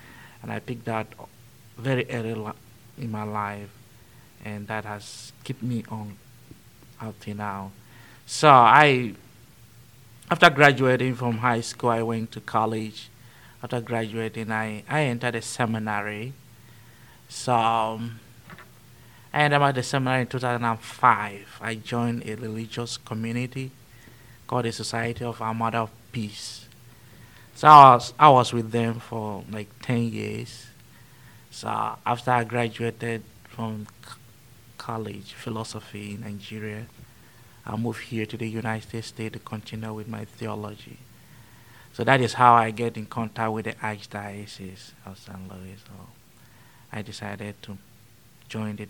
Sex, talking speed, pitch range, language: male, 135 wpm, 110-120 Hz, English